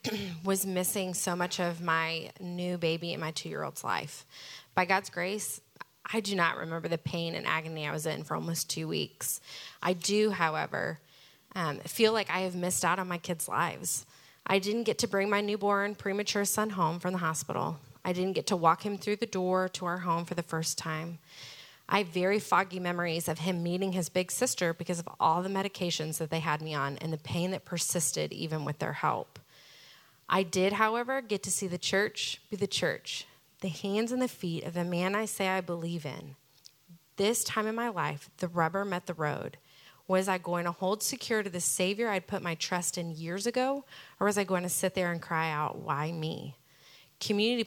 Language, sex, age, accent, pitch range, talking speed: English, female, 20-39, American, 165-200 Hz, 210 wpm